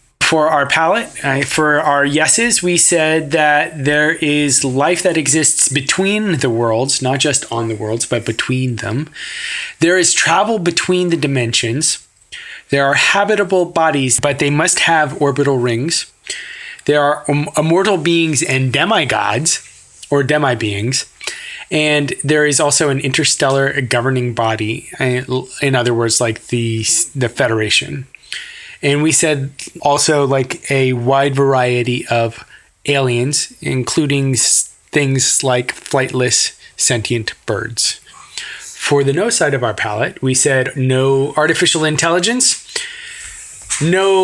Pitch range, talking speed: 130-165 Hz, 125 wpm